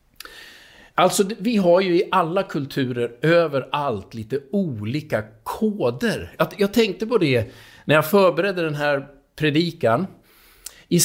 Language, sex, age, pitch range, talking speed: Swedish, male, 50-69, 135-185 Hz, 120 wpm